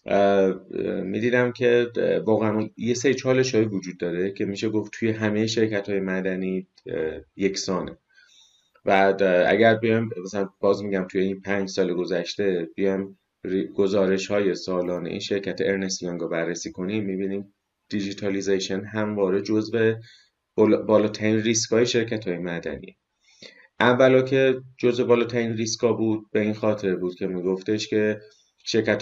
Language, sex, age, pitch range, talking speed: Persian, male, 30-49, 95-110 Hz, 130 wpm